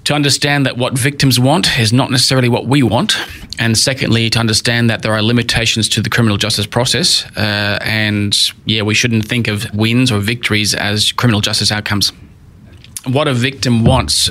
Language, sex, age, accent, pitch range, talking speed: English, male, 30-49, Australian, 105-120 Hz, 180 wpm